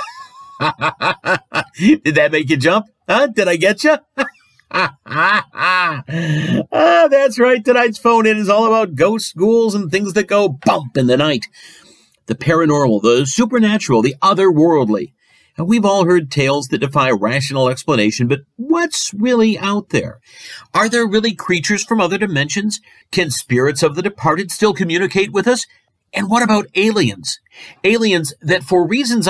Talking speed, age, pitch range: 145 wpm, 50-69, 140-210 Hz